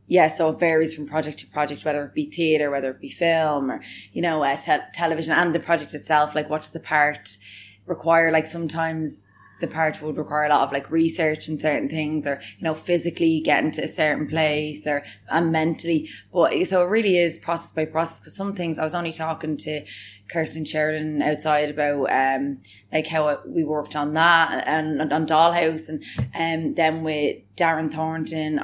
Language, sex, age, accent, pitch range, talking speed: English, female, 20-39, Irish, 150-165 Hz, 195 wpm